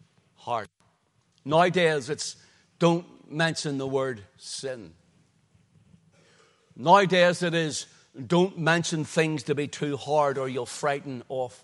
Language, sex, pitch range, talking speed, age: English, male, 150-185 Hz, 110 wpm, 60-79